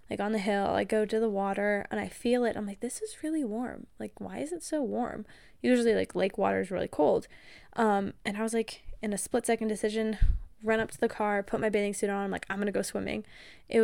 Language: English